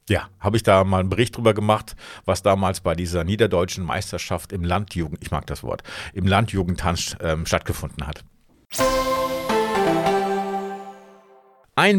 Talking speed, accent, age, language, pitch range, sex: 135 wpm, German, 50-69, German, 105-150 Hz, male